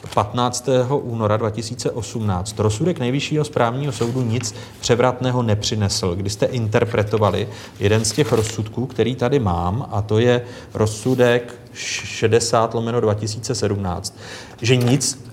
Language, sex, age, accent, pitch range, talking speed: Czech, male, 30-49, native, 110-150 Hz, 110 wpm